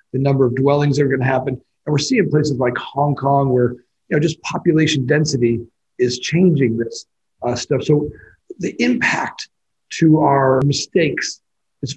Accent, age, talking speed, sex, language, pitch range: American, 40-59, 170 wpm, male, English, 135-165 Hz